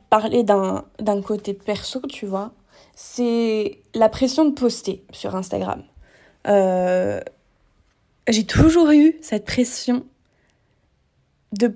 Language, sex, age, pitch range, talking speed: French, female, 20-39, 220-275 Hz, 100 wpm